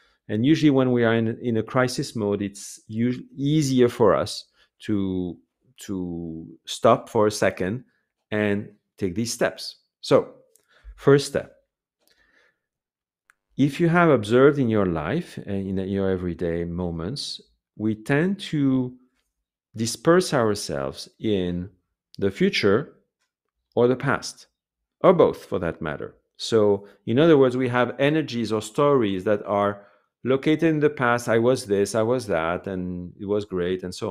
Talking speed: 145 wpm